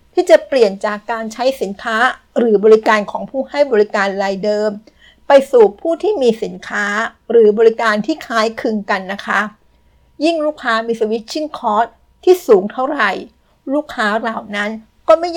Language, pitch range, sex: Thai, 215-260 Hz, female